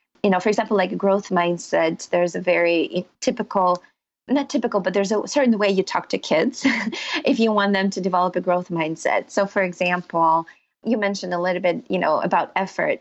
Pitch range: 175-205 Hz